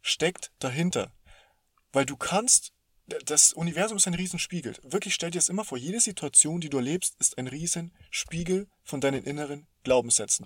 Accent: German